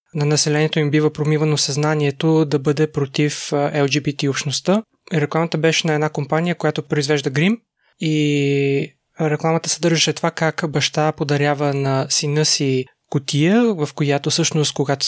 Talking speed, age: 135 wpm, 20-39